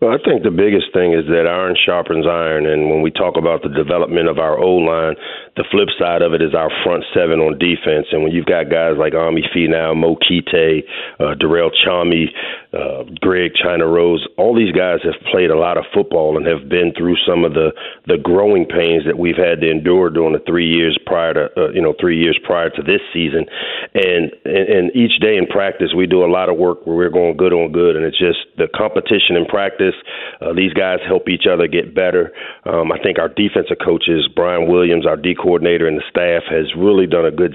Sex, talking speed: male, 225 wpm